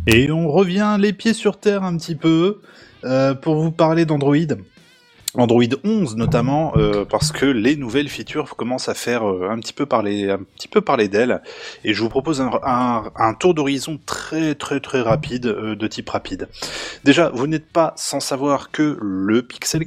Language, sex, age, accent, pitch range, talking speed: French, male, 20-39, French, 110-155 Hz, 190 wpm